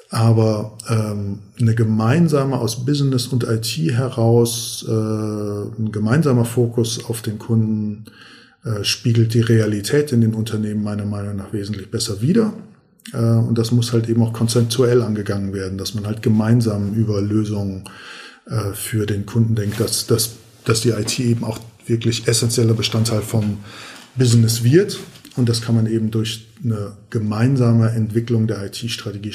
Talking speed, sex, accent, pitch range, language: 150 wpm, male, German, 110-120 Hz, German